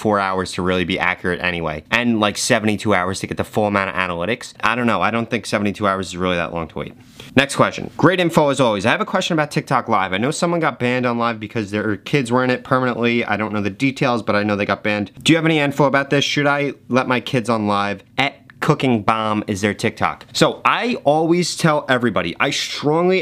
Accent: American